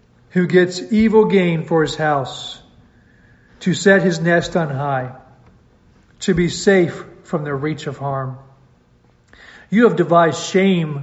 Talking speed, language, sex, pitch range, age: 135 wpm, English, male, 140-175 Hz, 40-59